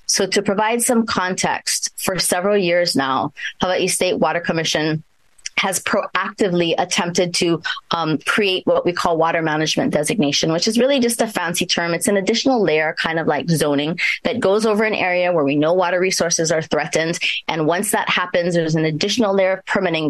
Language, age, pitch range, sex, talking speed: English, 20-39, 160-195 Hz, female, 185 wpm